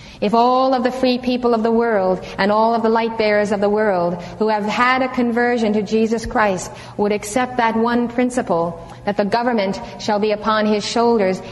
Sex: female